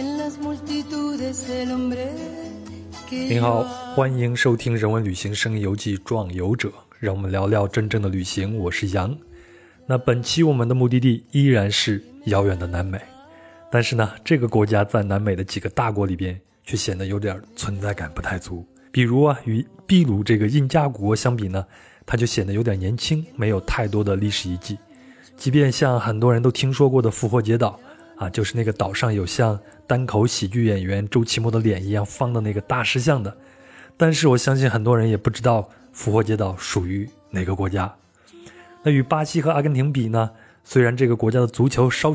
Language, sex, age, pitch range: Chinese, male, 20-39, 100-130 Hz